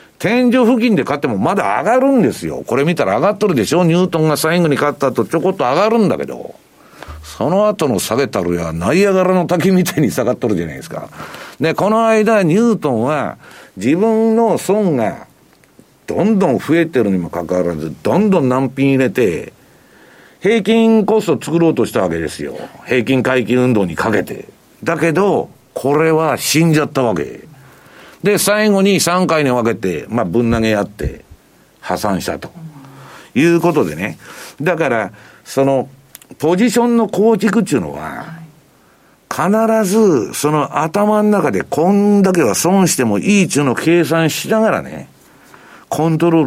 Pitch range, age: 130-205 Hz, 50-69